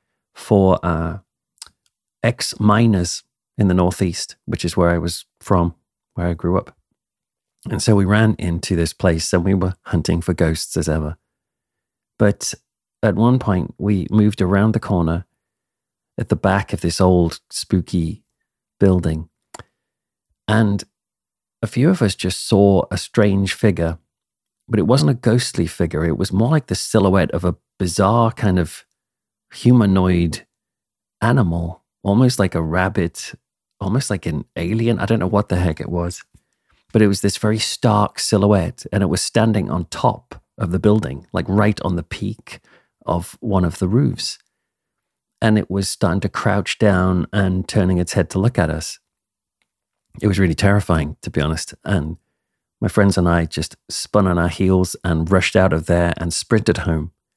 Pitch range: 85-105 Hz